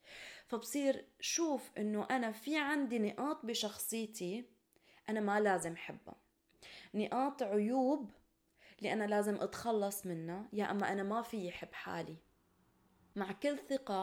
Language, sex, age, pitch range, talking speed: Arabic, female, 20-39, 190-250 Hz, 125 wpm